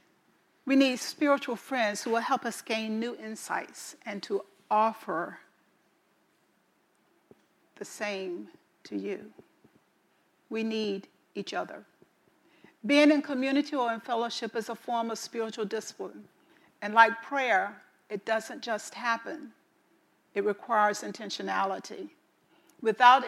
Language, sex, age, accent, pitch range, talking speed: English, female, 50-69, American, 220-280 Hz, 115 wpm